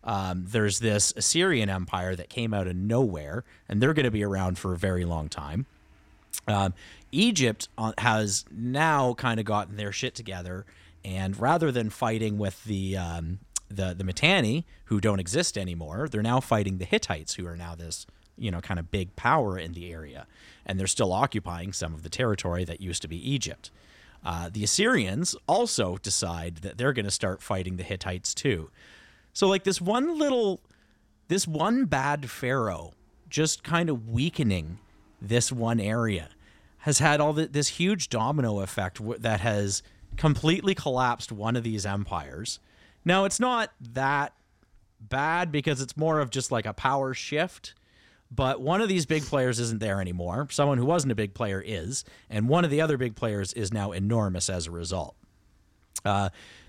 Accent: American